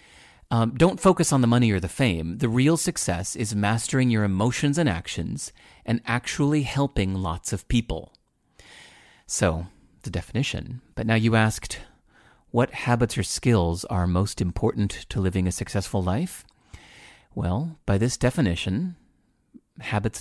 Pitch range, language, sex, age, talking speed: 100-130 Hz, English, male, 40-59, 145 wpm